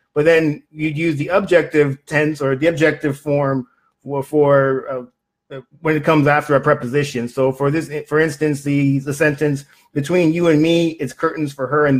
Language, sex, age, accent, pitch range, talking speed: English, male, 30-49, American, 125-150 Hz, 185 wpm